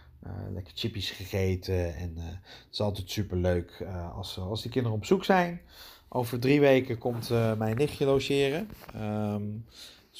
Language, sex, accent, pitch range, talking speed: Dutch, male, Dutch, 100-135 Hz, 165 wpm